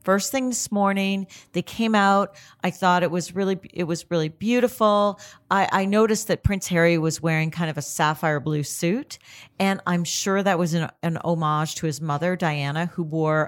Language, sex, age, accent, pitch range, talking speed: English, female, 50-69, American, 155-190 Hz, 195 wpm